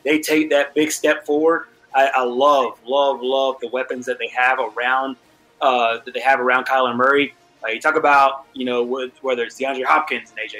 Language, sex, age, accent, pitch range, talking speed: English, male, 20-39, American, 130-165 Hz, 205 wpm